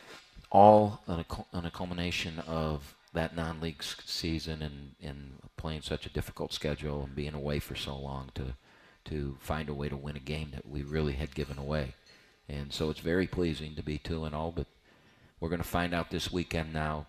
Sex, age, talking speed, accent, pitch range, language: male, 40-59, 205 wpm, American, 75-80 Hz, English